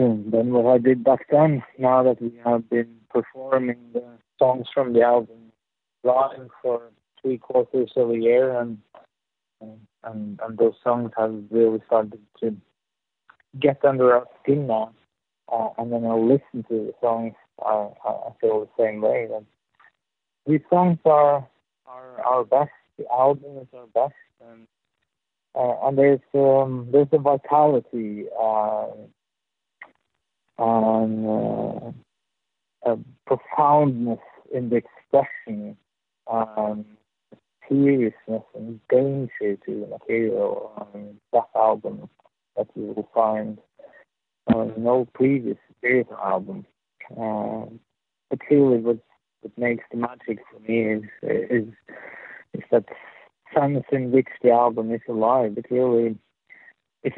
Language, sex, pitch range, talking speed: English, male, 115-135 Hz, 130 wpm